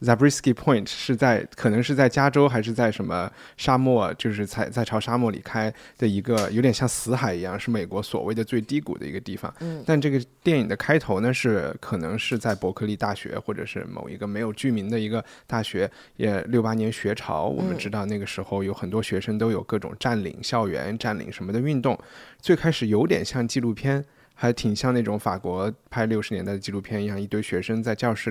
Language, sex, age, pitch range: Chinese, male, 20-39, 105-130 Hz